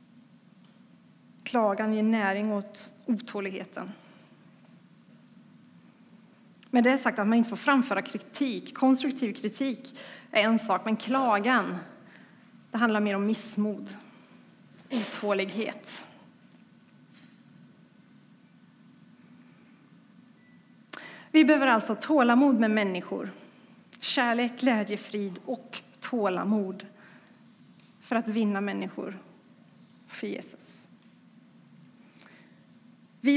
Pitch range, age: 210-245 Hz, 30-49